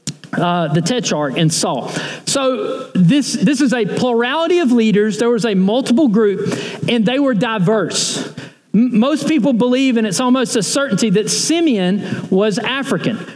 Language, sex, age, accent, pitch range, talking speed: English, male, 40-59, American, 175-250 Hz, 155 wpm